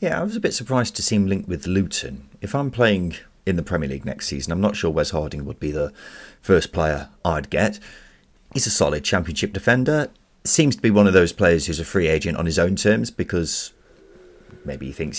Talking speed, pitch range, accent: 225 wpm, 80-110 Hz, British